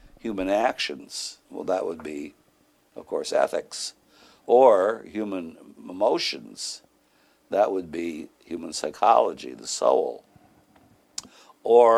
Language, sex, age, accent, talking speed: English, male, 60-79, American, 100 wpm